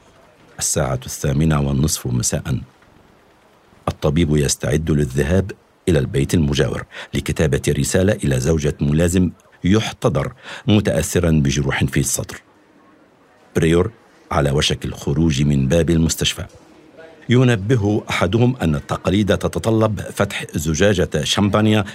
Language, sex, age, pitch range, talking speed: Arabic, male, 60-79, 85-115 Hz, 95 wpm